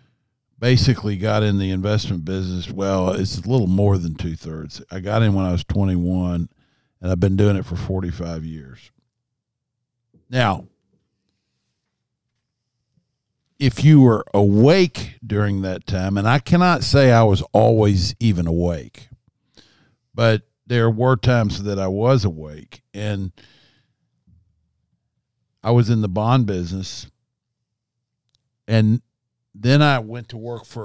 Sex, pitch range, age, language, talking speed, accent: male, 100-125 Hz, 50-69, English, 130 wpm, American